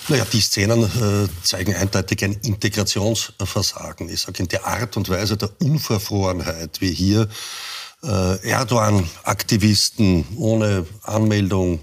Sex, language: male, German